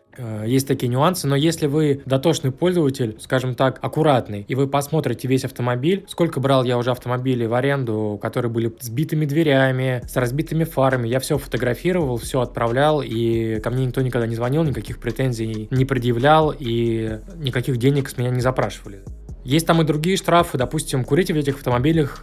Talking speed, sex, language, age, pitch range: 170 wpm, male, Russian, 20-39, 120-145 Hz